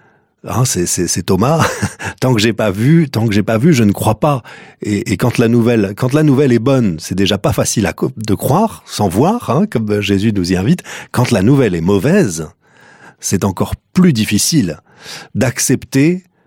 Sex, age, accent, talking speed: male, 40-59, French, 200 wpm